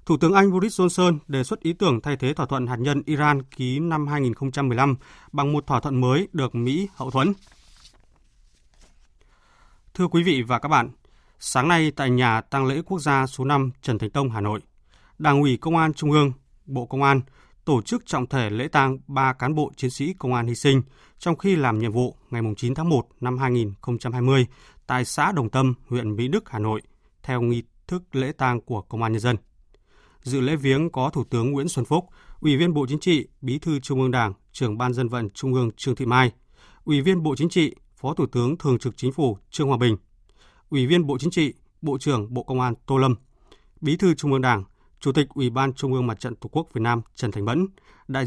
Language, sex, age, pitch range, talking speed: Vietnamese, male, 20-39, 120-145 Hz, 225 wpm